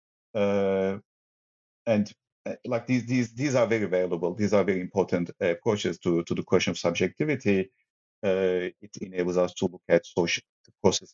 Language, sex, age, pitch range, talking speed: English, male, 50-69, 90-115 Hz, 170 wpm